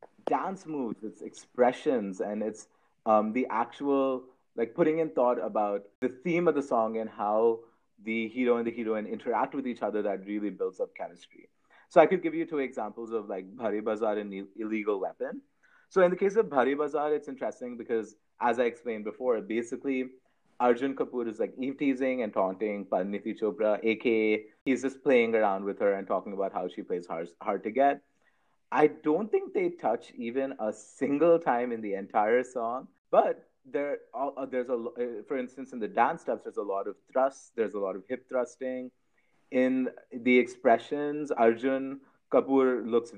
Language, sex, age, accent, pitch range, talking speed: English, male, 30-49, Indian, 110-145 Hz, 180 wpm